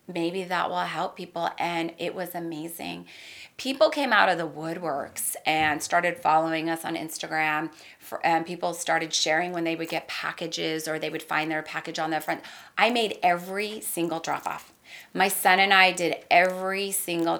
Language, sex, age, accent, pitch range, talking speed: English, female, 30-49, American, 160-205 Hz, 185 wpm